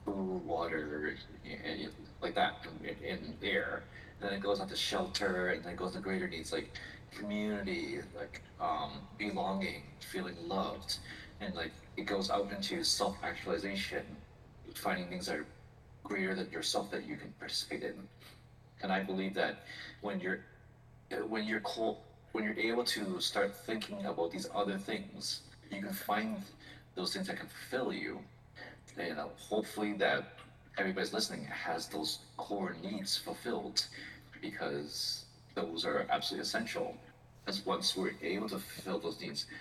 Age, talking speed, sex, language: 30-49, 150 wpm, male, English